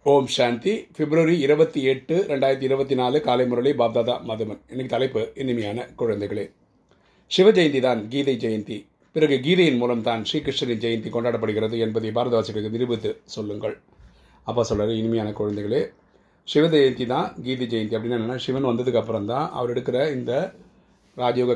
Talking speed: 135 wpm